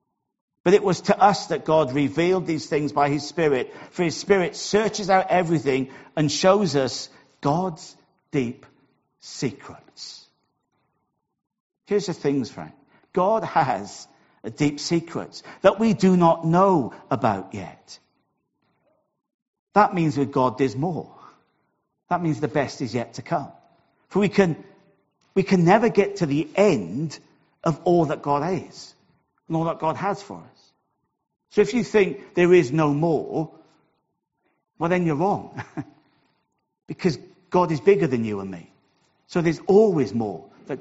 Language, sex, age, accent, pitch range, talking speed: English, male, 50-69, British, 145-190 Hz, 150 wpm